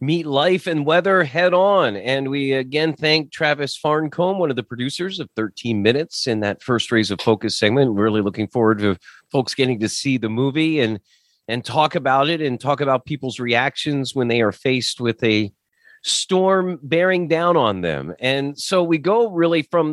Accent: American